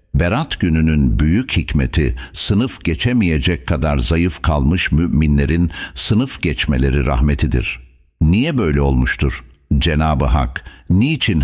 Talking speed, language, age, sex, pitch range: 100 wpm, Turkish, 60-79, male, 70-95 Hz